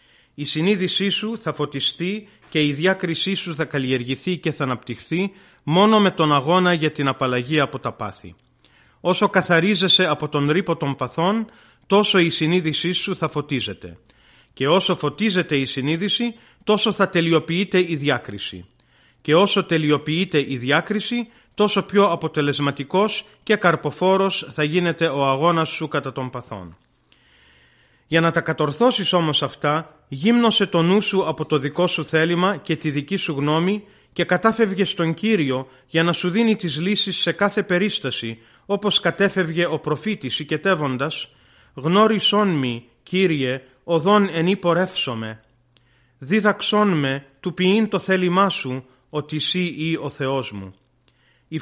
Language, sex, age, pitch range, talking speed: Greek, male, 30-49, 140-190 Hz, 140 wpm